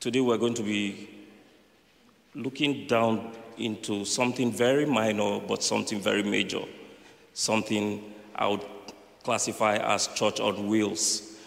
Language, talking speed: English, 120 wpm